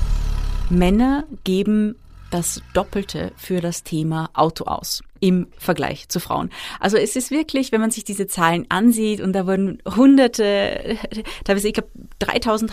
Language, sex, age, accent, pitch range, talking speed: German, female, 30-49, German, 175-235 Hz, 145 wpm